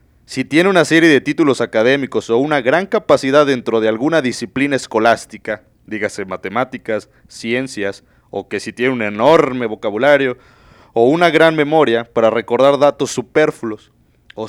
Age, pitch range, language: 30-49, 115-150 Hz, Spanish